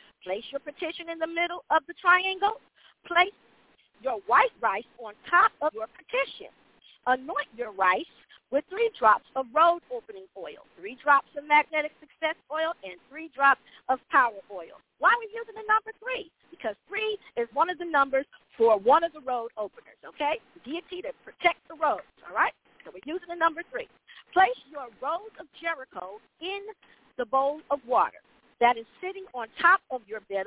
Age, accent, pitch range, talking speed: 50-69, American, 250-360 Hz, 180 wpm